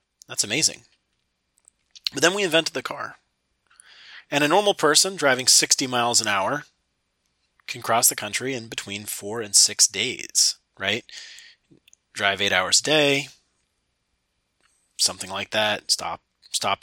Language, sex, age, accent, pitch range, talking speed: English, male, 30-49, American, 110-140 Hz, 135 wpm